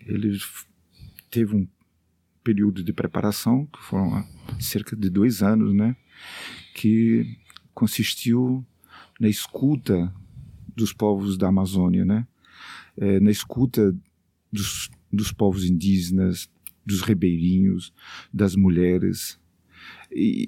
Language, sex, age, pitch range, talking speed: Portuguese, male, 50-69, 95-120 Hz, 100 wpm